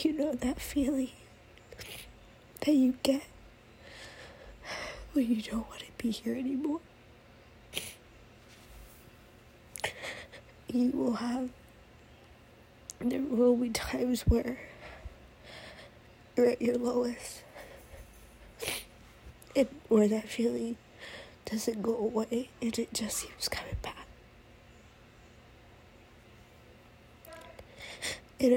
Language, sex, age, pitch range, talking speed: English, female, 10-29, 215-250 Hz, 85 wpm